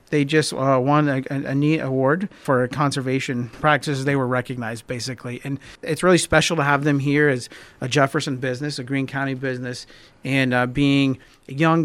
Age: 40-59